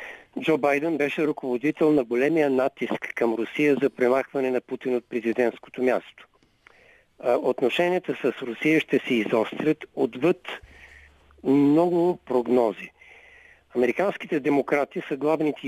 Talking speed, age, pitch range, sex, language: 110 wpm, 50-69, 125-165 Hz, male, Bulgarian